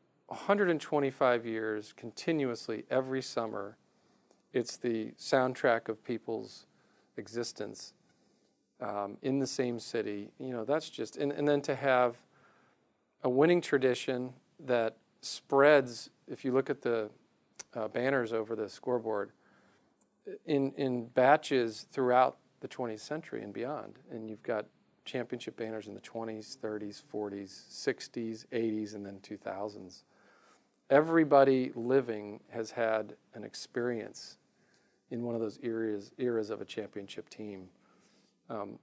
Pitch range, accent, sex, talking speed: 110-130 Hz, American, male, 125 wpm